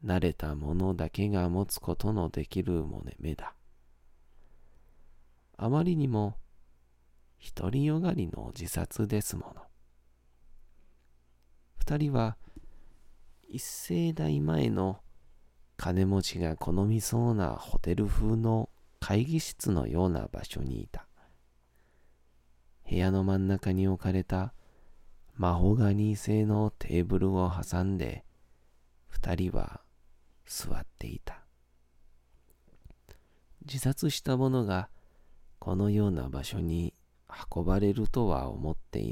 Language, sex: Japanese, male